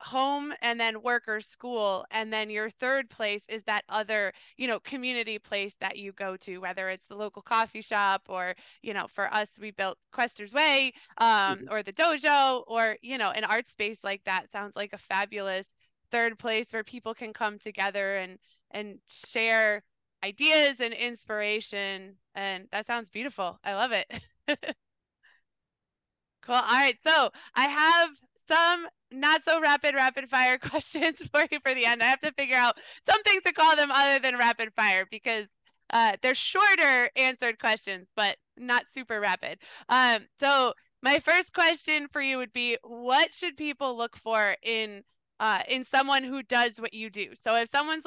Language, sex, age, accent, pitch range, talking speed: English, female, 20-39, American, 210-275 Hz, 170 wpm